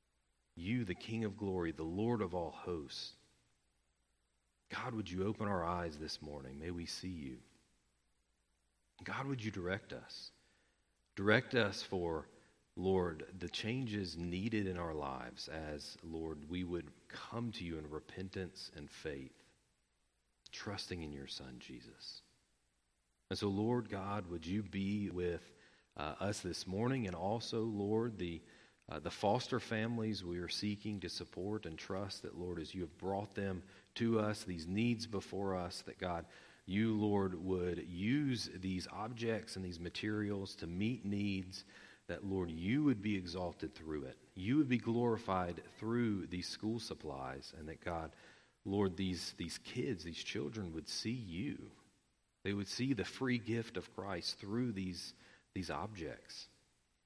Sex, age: male, 40-59